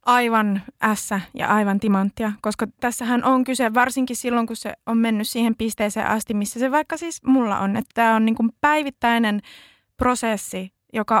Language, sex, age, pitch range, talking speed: Finnish, female, 20-39, 205-255 Hz, 170 wpm